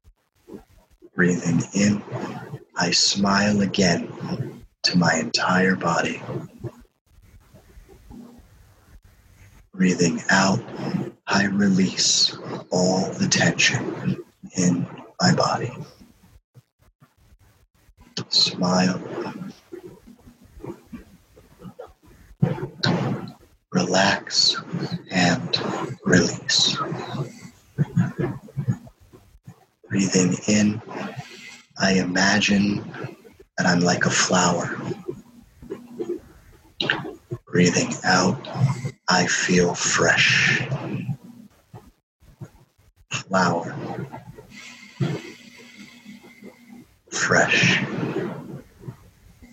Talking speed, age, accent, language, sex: 45 wpm, 50-69, American, English, male